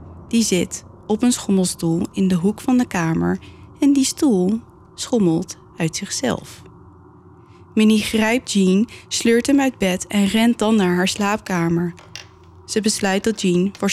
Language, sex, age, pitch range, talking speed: Dutch, female, 20-39, 165-210 Hz, 150 wpm